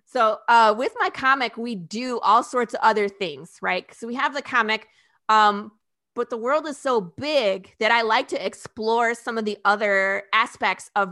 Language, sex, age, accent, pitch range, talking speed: English, female, 30-49, American, 200-235 Hz, 195 wpm